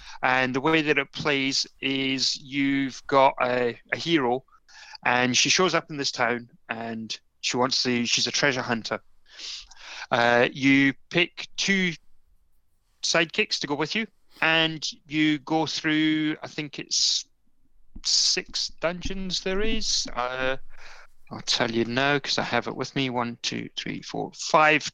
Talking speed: 150 wpm